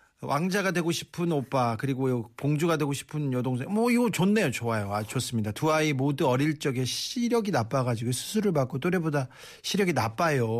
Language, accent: Korean, native